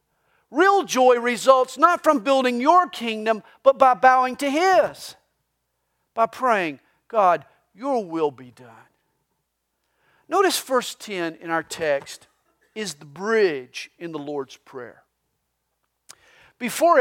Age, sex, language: 50-69, male, English